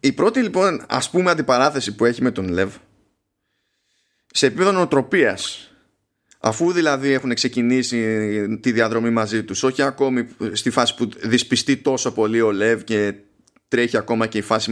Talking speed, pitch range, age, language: 150 wpm, 105-140 Hz, 20-39, Greek